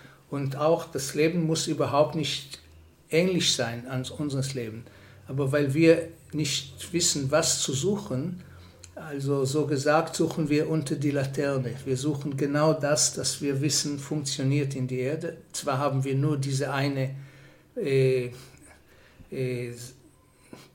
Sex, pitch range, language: male, 130-155 Hz, German